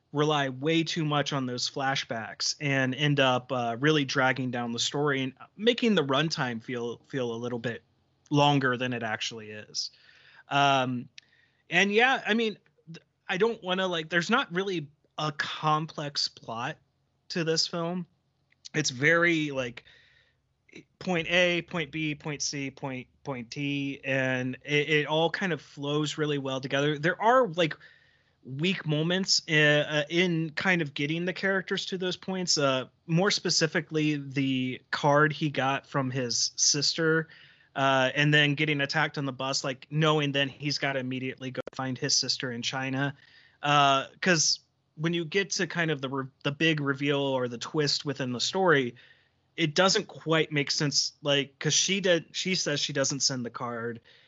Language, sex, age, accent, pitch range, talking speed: English, male, 30-49, American, 135-165 Hz, 170 wpm